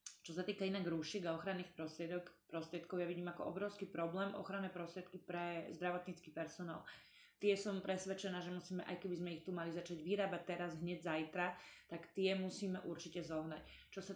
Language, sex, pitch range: Slovak, female, 175-195 Hz